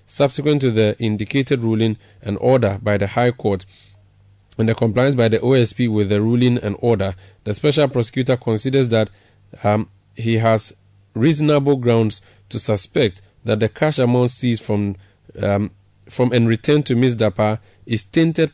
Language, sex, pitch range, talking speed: English, male, 105-130 Hz, 160 wpm